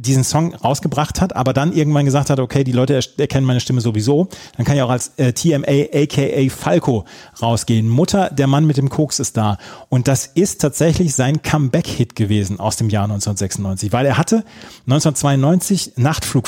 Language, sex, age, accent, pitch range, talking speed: German, male, 30-49, German, 125-150 Hz, 180 wpm